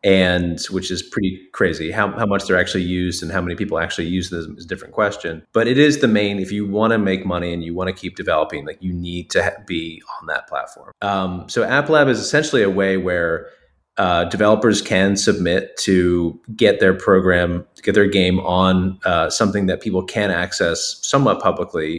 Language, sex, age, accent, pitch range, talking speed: English, male, 30-49, American, 90-100 Hz, 215 wpm